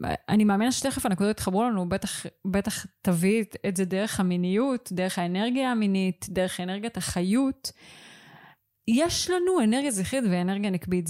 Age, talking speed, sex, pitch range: 20-39, 135 wpm, female, 180-225 Hz